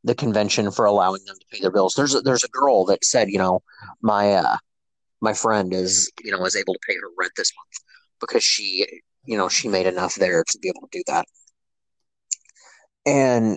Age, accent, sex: 30-49, American, male